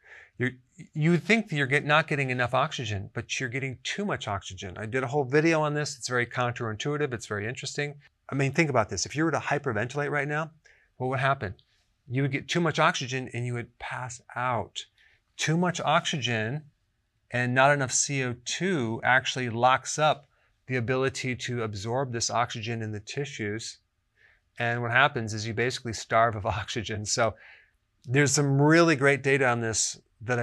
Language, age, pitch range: English, 30-49, 110-135 Hz